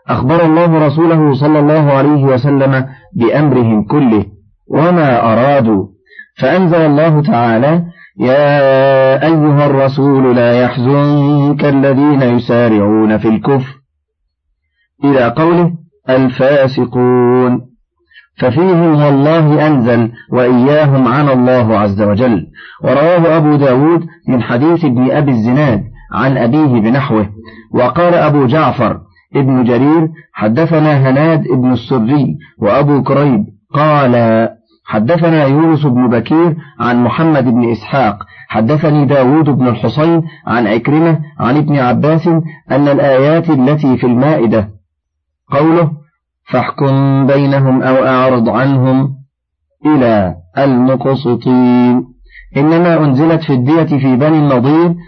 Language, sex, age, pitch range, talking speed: Arabic, male, 40-59, 125-155 Hz, 100 wpm